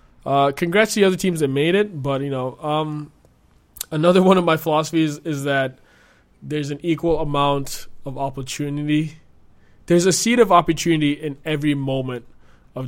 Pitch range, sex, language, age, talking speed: 130-165 Hz, male, English, 20-39, 170 wpm